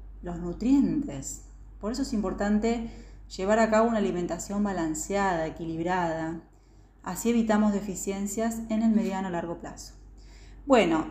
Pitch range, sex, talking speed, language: 165-225 Hz, female, 125 wpm, Spanish